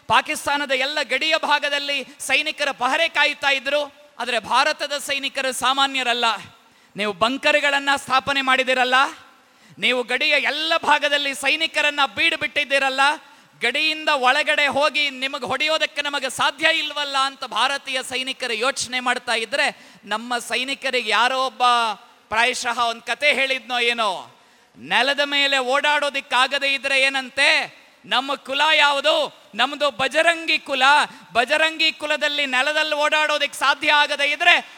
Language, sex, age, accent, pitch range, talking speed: Kannada, male, 20-39, native, 255-295 Hz, 110 wpm